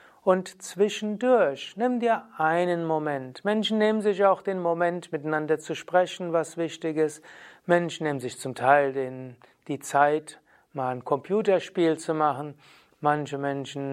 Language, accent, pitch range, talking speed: German, German, 145-190 Hz, 140 wpm